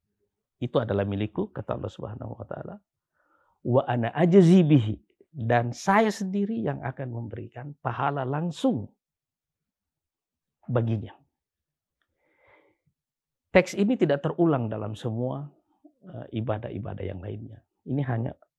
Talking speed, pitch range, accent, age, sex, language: 100 wpm, 110-175 Hz, native, 50-69, male, Indonesian